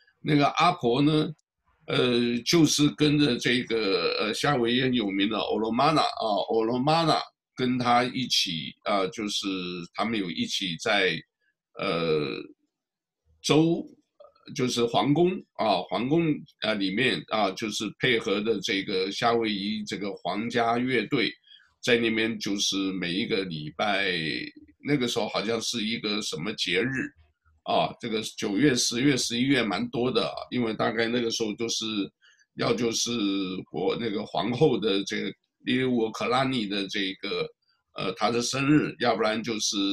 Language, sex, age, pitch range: Chinese, male, 60-79, 110-150 Hz